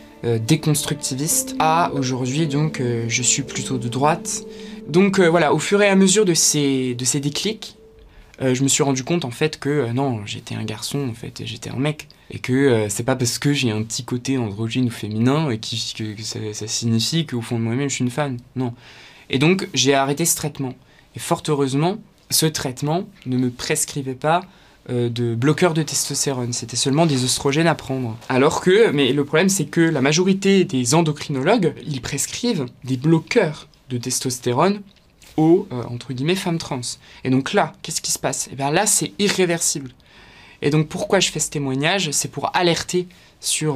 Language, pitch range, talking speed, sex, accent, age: French, 125-165 Hz, 200 wpm, male, French, 20-39